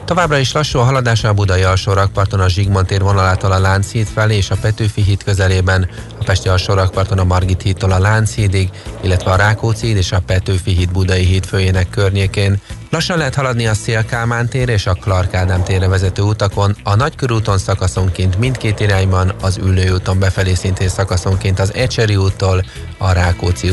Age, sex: 30-49, male